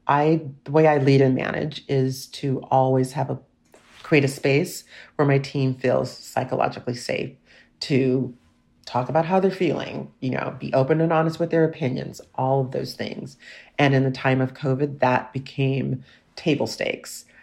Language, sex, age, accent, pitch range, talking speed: English, female, 40-59, American, 130-155 Hz, 170 wpm